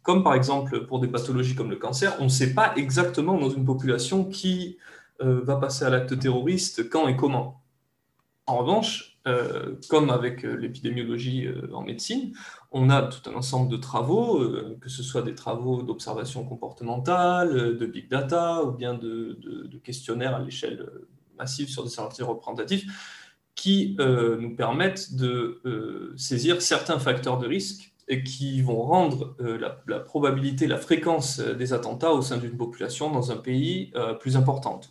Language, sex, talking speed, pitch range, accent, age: French, male, 155 wpm, 125-155 Hz, French, 20-39